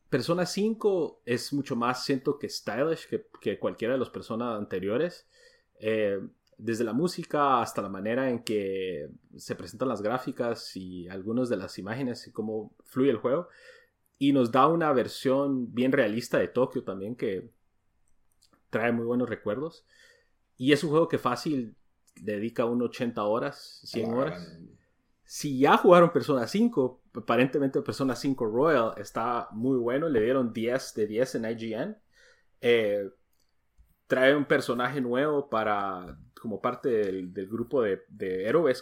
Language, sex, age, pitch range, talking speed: Spanish, male, 30-49, 115-150 Hz, 150 wpm